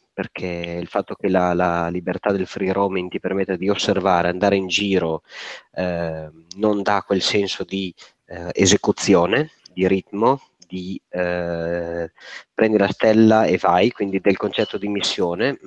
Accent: native